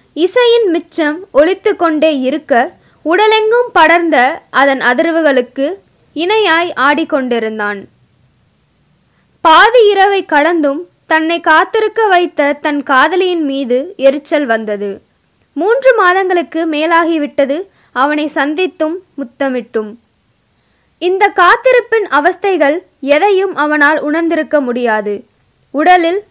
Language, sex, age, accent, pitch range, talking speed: Tamil, female, 20-39, native, 280-370 Hz, 80 wpm